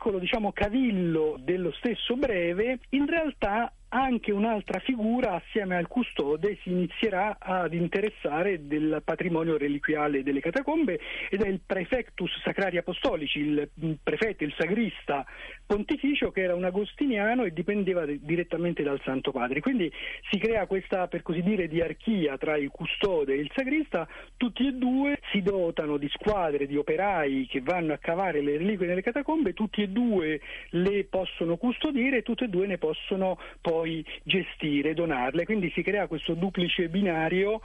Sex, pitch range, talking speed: male, 150-210 Hz, 155 wpm